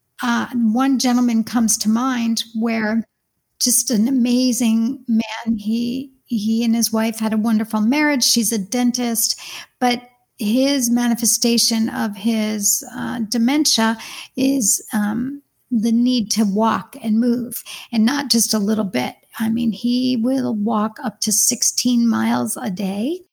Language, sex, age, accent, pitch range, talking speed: English, female, 50-69, American, 220-250 Hz, 140 wpm